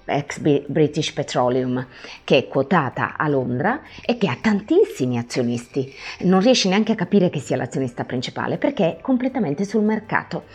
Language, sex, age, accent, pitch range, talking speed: Italian, female, 30-49, native, 140-205 Hz, 155 wpm